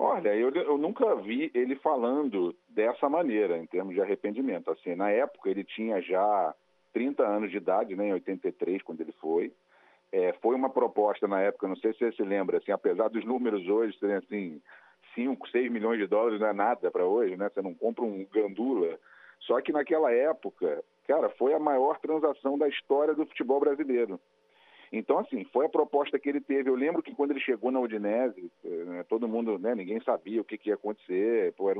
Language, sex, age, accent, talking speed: Portuguese, male, 40-59, Brazilian, 200 wpm